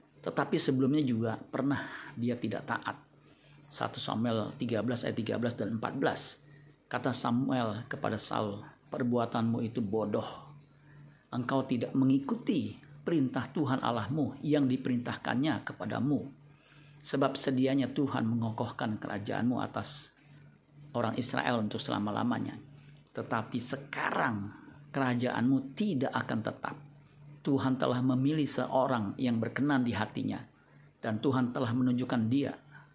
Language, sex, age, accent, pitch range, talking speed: Indonesian, male, 50-69, native, 120-145 Hz, 105 wpm